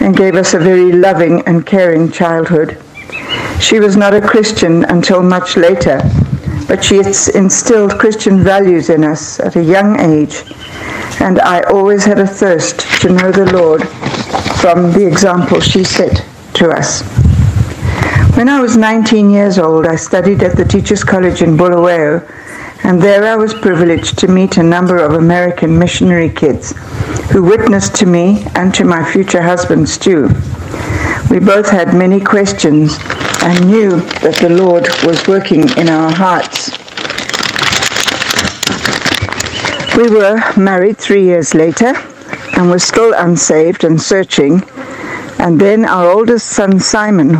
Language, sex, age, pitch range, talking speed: English, female, 60-79, 165-200 Hz, 145 wpm